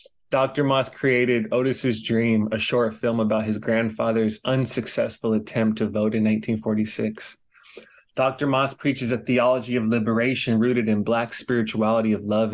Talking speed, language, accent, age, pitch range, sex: 145 wpm, English, American, 20-39, 110-130 Hz, male